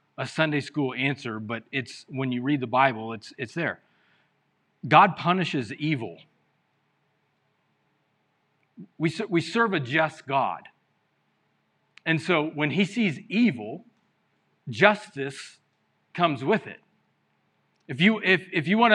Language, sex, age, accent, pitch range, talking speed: English, male, 40-59, American, 150-210 Hz, 125 wpm